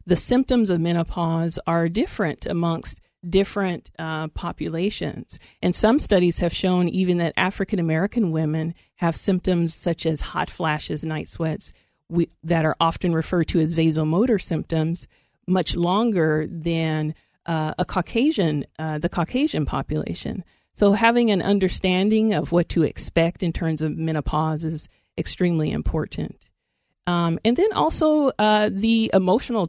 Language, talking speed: English, 135 wpm